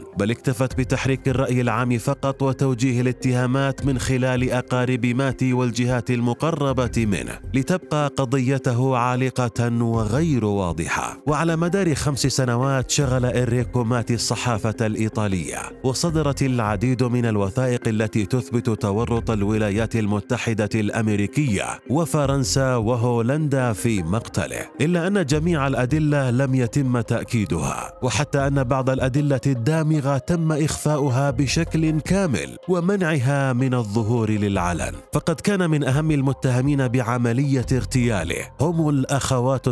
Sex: male